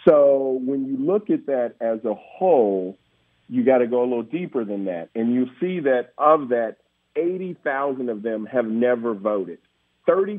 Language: English